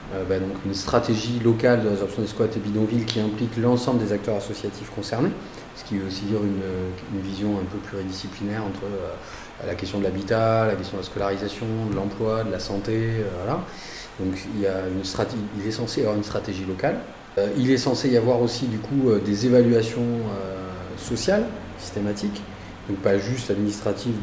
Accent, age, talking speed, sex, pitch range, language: French, 30-49, 200 wpm, male, 100-120 Hz, French